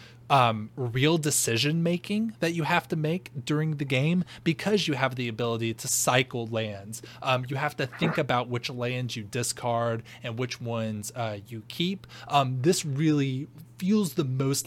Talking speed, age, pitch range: 170 wpm, 20-39, 120-150 Hz